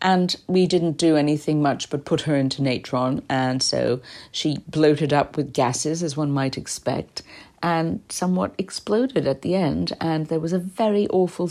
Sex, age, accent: female, 50-69, British